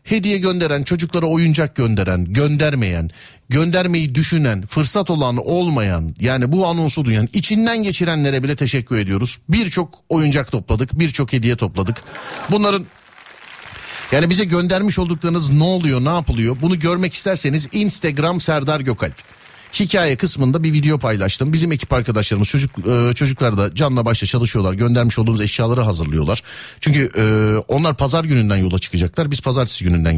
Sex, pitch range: male, 115-170 Hz